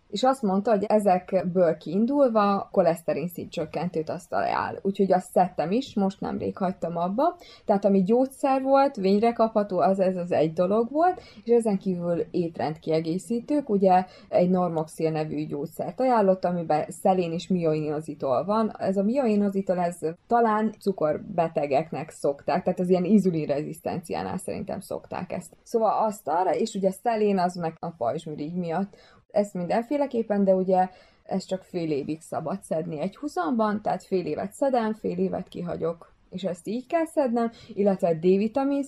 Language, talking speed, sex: Hungarian, 150 wpm, female